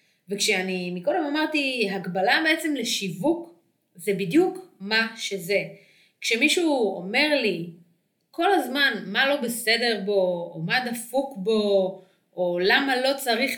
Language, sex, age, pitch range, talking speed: Hebrew, female, 30-49, 185-255 Hz, 120 wpm